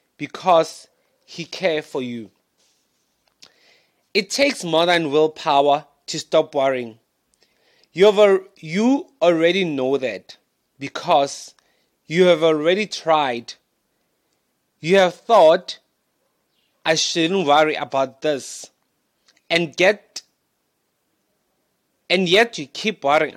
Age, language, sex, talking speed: 30-49, English, male, 100 wpm